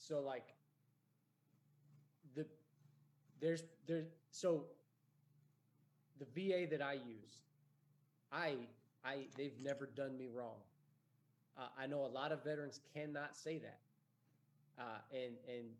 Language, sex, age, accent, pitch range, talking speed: English, male, 20-39, American, 130-155 Hz, 120 wpm